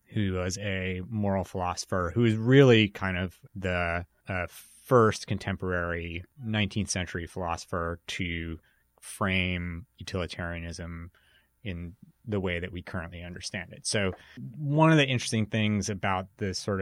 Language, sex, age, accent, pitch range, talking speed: English, male, 30-49, American, 90-110 Hz, 130 wpm